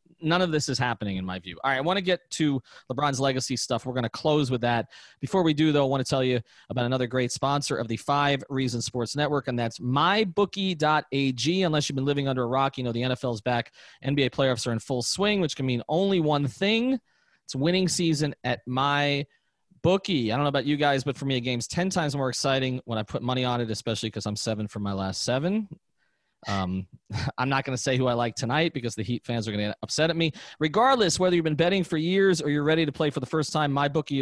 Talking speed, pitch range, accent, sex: 255 wpm, 125-155 Hz, American, male